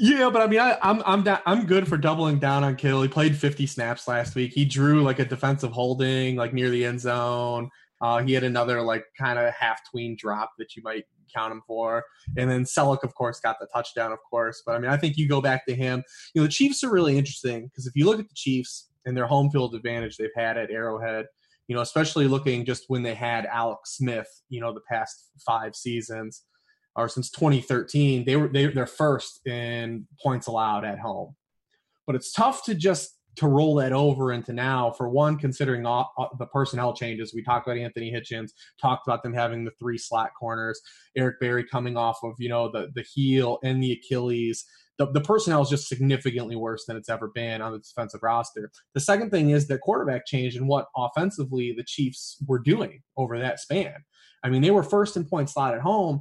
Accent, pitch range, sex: American, 120-145 Hz, male